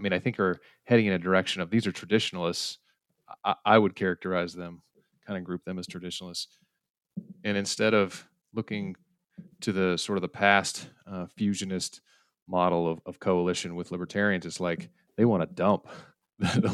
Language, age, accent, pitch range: English, 30-49, American, 85-100 Hz